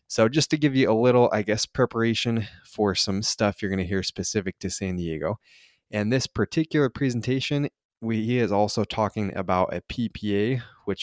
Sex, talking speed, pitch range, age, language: male, 180 wpm, 100-125 Hz, 20-39, English